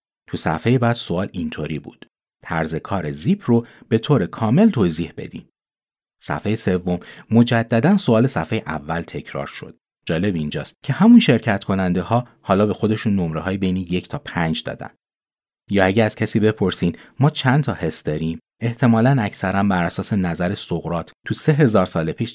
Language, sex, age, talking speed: Persian, male, 30-49, 165 wpm